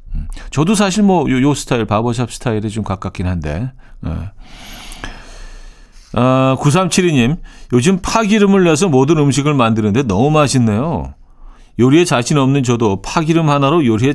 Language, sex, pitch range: Korean, male, 110-160 Hz